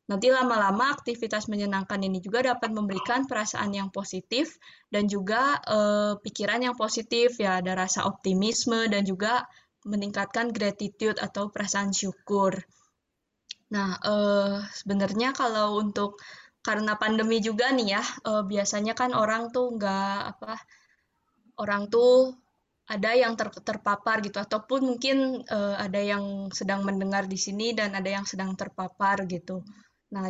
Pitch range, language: 195-230 Hz, Indonesian